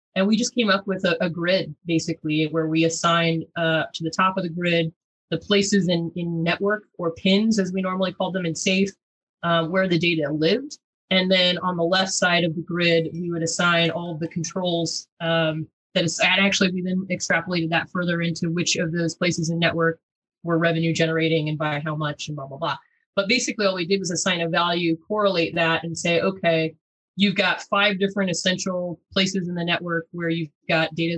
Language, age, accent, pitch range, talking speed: English, 20-39, American, 165-190 Hz, 210 wpm